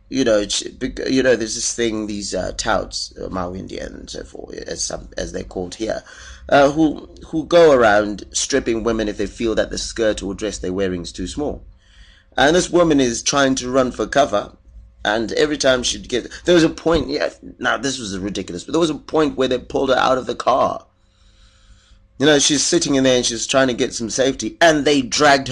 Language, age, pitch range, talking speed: English, 30-49, 100-150 Hz, 220 wpm